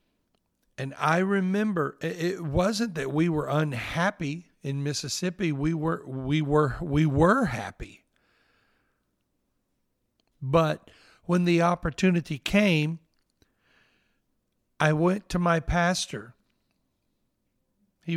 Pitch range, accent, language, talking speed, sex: 140-170 Hz, American, English, 95 wpm, male